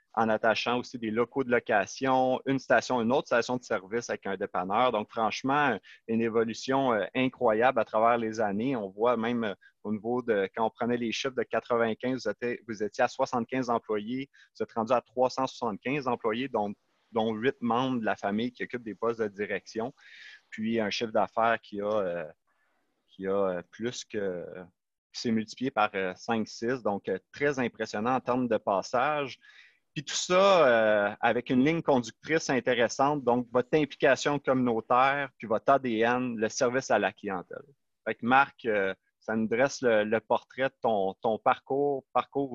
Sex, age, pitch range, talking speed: male, 30-49, 110-135 Hz, 170 wpm